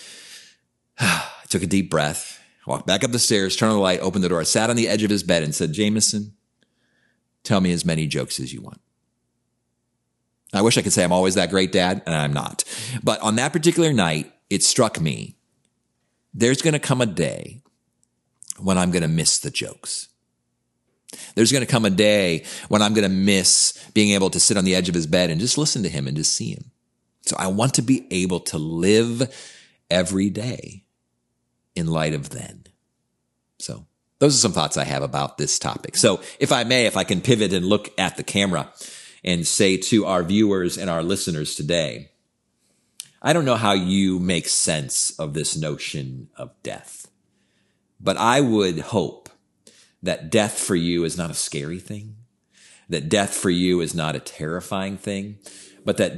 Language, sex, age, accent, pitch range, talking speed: English, male, 40-59, American, 85-110 Hz, 190 wpm